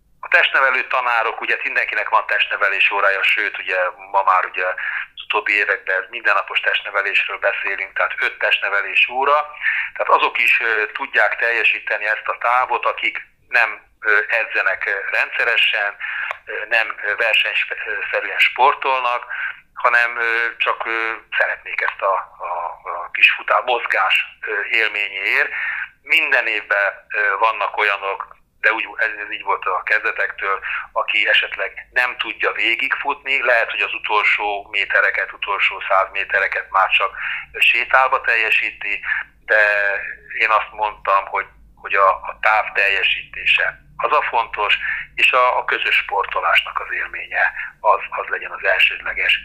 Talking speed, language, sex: 120 wpm, Hungarian, male